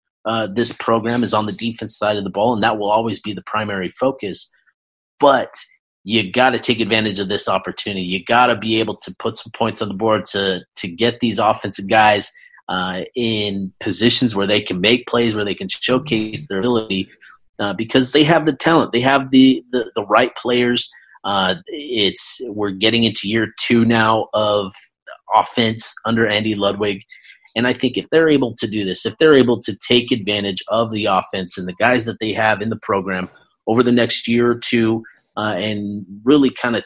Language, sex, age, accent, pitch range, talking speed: English, male, 30-49, American, 105-120 Hz, 200 wpm